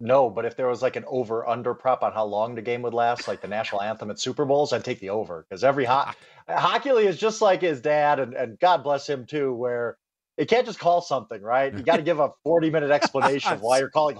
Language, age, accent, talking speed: English, 30-49, American, 265 wpm